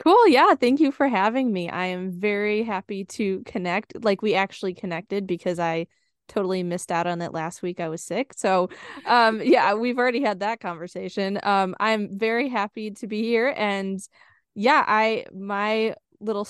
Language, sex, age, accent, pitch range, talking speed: English, female, 20-39, American, 175-220 Hz, 180 wpm